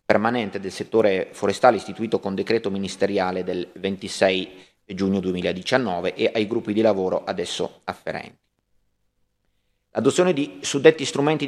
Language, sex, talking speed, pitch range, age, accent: Italian, male, 120 wpm, 100-120 Hz, 30-49, native